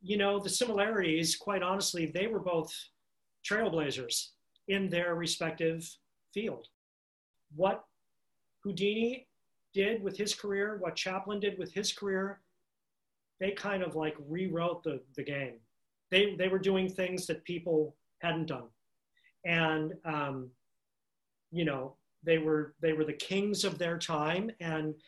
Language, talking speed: English, 135 wpm